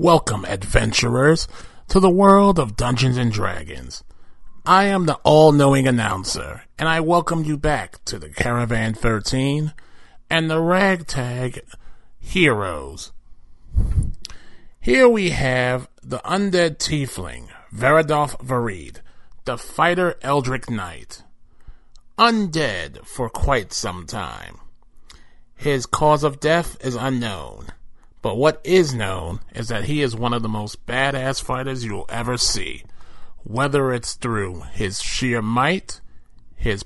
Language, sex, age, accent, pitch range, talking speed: English, male, 30-49, American, 110-155 Hz, 120 wpm